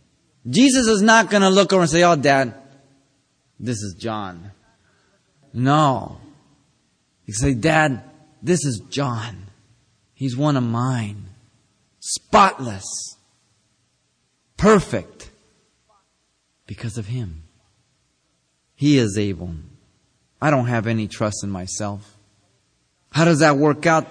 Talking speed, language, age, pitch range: 110 wpm, English, 30-49, 105-155 Hz